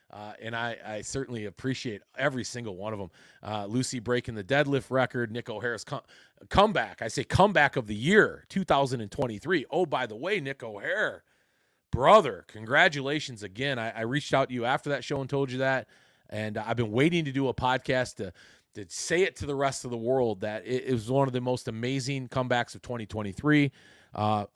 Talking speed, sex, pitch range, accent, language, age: 195 wpm, male, 100-130 Hz, American, English, 30-49